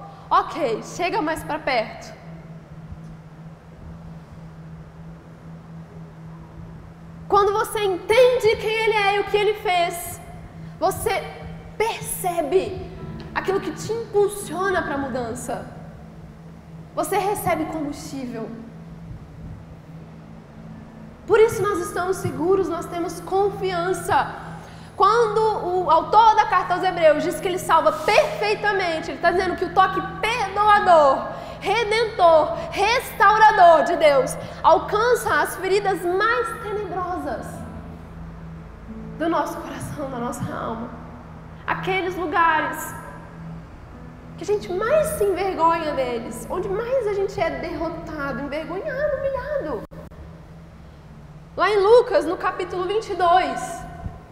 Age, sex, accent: 10-29, female, Brazilian